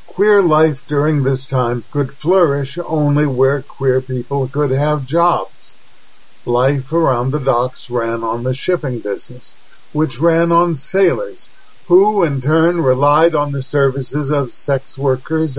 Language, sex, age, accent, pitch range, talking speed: English, male, 50-69, American, 130-155 Hz, 140 wpm